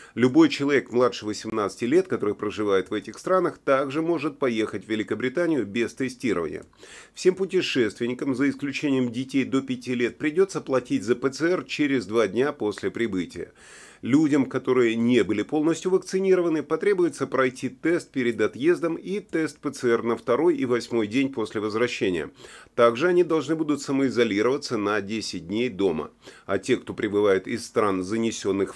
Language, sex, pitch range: Russian, male, 105-150 Hz